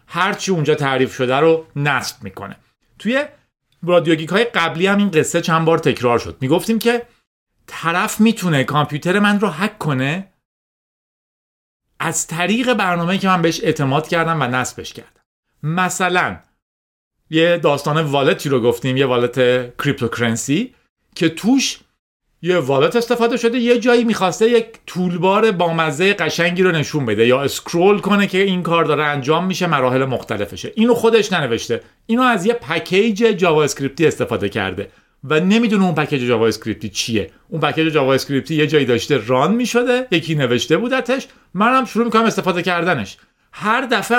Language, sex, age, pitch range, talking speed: Persian, male, 40-59, 140-205 Hz, 150 wpm